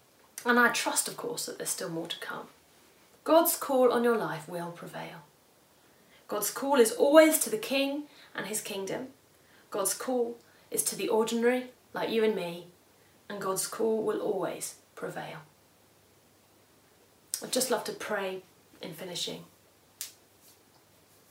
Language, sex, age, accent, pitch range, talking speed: English, female, 30-49, British, 190-245 Hz, 145 wpm